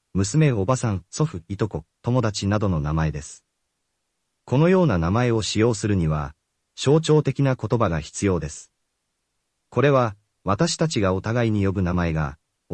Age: 40-59